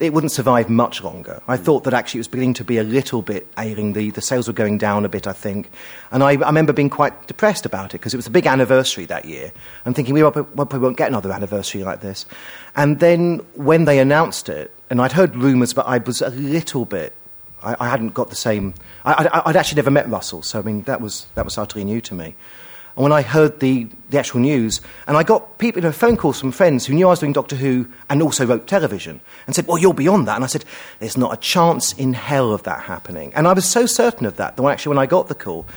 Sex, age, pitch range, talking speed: male, 40-59, 115-155 Hz, 260 wpm